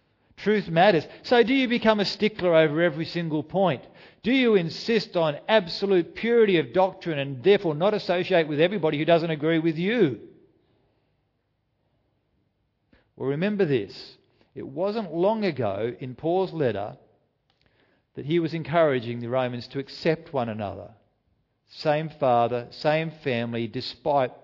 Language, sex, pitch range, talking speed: English, male, 130-180 Hz, 135 wpm